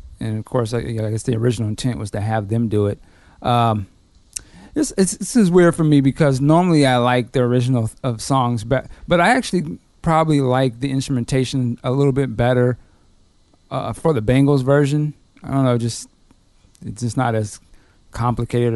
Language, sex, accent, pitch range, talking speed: English, male, American, 115-165 Hz, 190 wpm